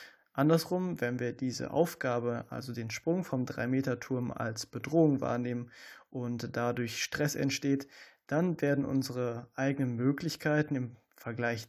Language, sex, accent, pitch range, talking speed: German, male, German, 120-145 Hz, 125 wpm